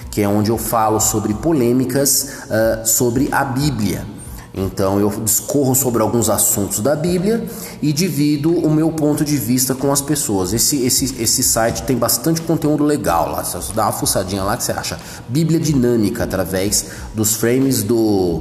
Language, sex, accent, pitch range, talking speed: Portuguese, male, Brazilian, 110-155 Hz, 155 wpm